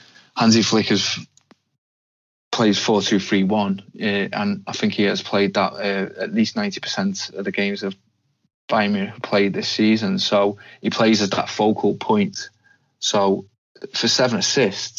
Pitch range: 100-120 Hz